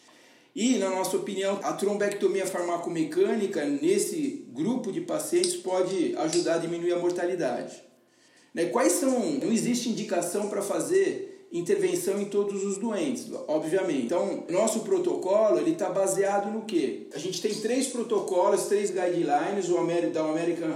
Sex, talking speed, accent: male, 140 wpm, Brazilian